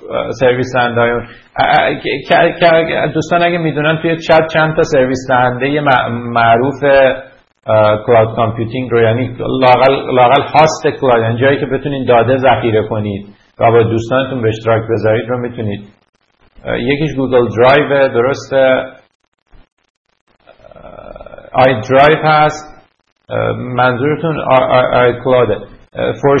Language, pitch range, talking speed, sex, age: English, 120-155 Hz, 100 wpm, male, 50-69